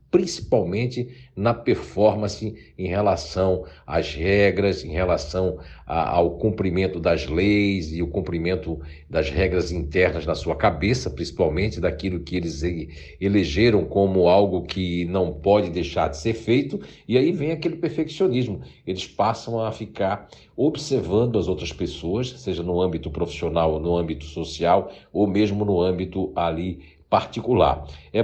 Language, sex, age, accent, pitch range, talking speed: Portuguese, male, 60-79, Brazilian, 85-105 Hz, 135 wpm